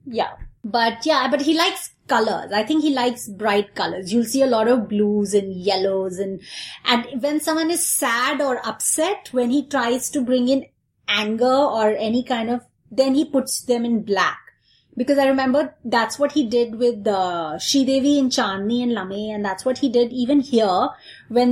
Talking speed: 190 wpm